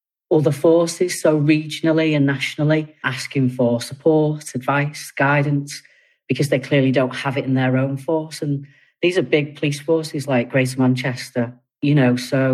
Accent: British